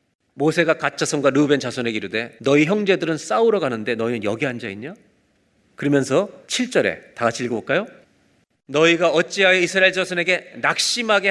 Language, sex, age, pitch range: Korean, male, 40-59, 145-205 Hz